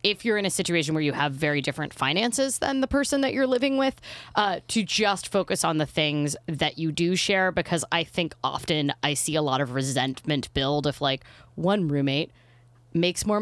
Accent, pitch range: American, 145-205 Hz